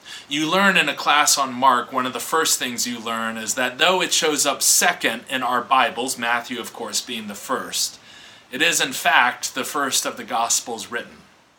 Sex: male